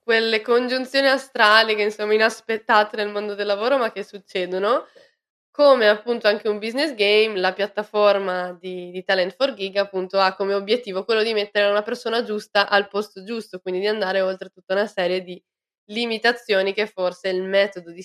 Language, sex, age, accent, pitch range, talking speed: Italian, female, 20-39, native, 185-220 Hz, 175 wpm